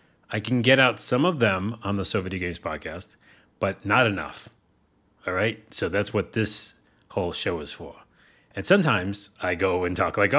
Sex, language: male, English